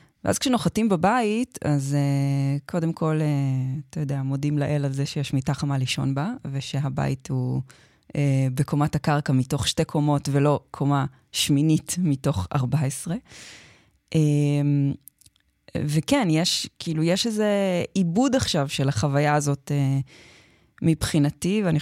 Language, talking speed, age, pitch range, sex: Hebrew, 125 wpm, 20-39, 140-175 Hz, female